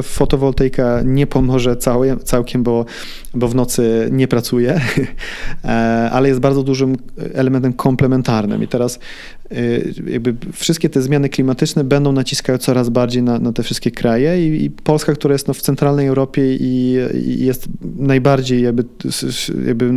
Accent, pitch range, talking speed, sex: native, 120-135 Hz, 140 wpm, male